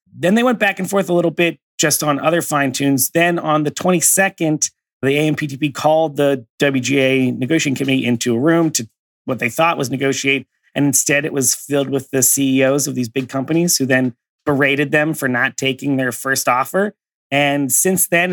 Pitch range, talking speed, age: 125-150 Hz, 195 wpm, 30-49